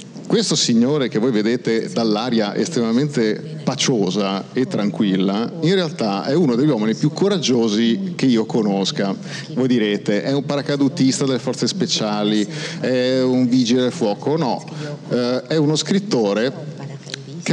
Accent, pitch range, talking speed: native, 120-170 Hz, 135 wpm